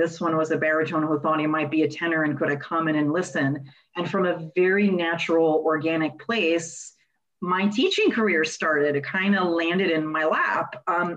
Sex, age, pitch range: female, 40-59, 155-180 Hz